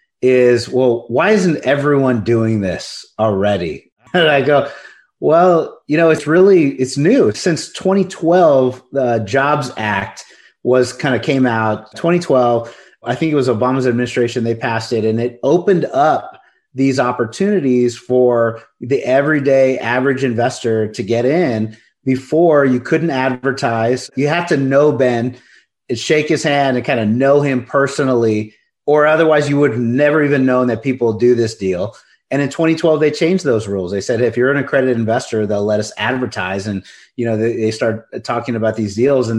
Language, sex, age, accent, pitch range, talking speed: English, male, 30-49, American, 115-140 Hz, 170 wpm